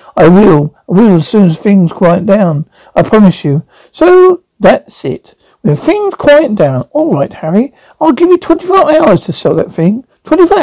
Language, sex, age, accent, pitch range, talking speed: English, male, 60-79, British, 165-225 Hz, 185 wpm